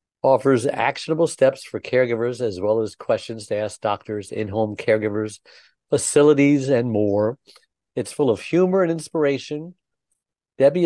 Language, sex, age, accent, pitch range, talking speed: English, male, 50-69, American, 110-145 Hz, 135 wpm